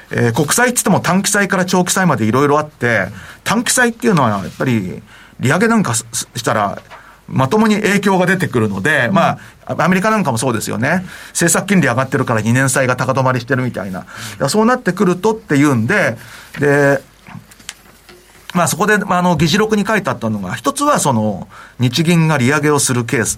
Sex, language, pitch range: male, Japanese, 130-190 Hz